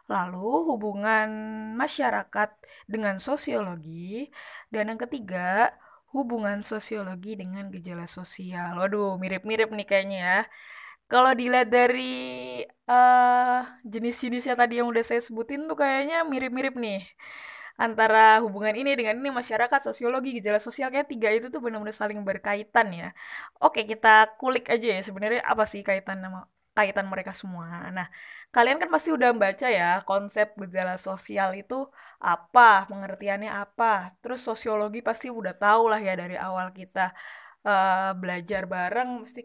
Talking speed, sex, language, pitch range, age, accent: 135 wpm, female, Indonesian, 195-240 Hz, 20-39, native